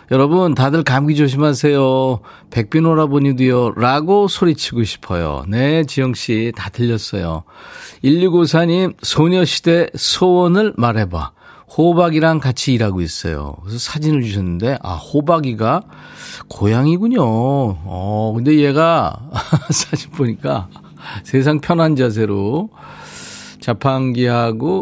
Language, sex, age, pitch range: Korean, male, 40-59, 110-155 Hz